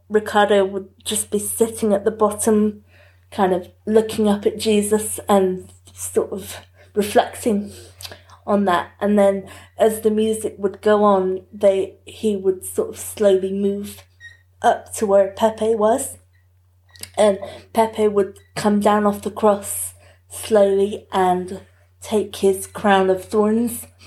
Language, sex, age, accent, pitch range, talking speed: English, female, 30-49, British, 170-215 Hz, 135 wpm